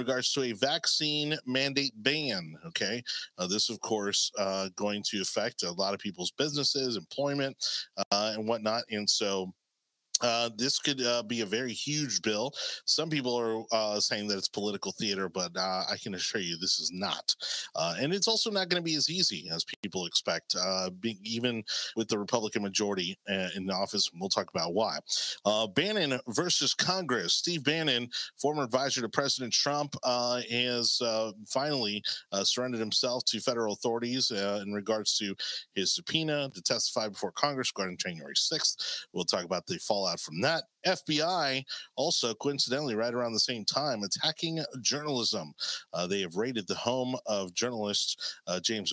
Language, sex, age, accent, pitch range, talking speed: English, male, 30-49, American, 105-140 Hz, 170 wpm